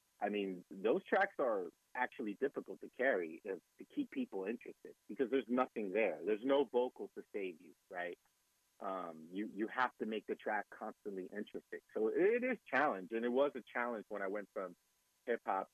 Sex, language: male, English